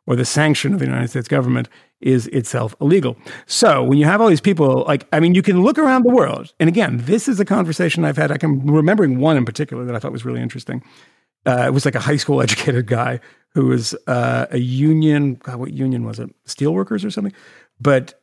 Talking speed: 230 wpm